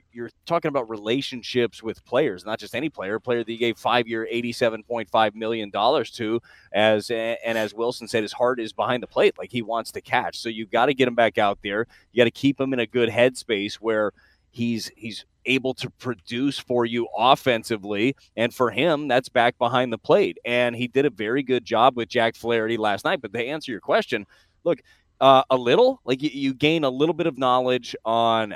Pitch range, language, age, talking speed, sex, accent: 115-130 Hz, English, 30-49, 215 wpm, male, American